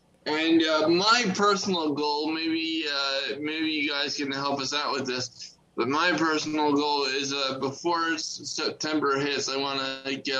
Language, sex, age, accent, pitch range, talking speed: English, male, 20-39, American, 135-170 Hz, 175 wpm